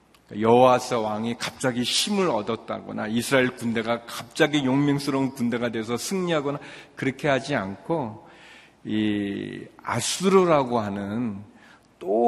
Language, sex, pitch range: Korean, male, 110-135 Hz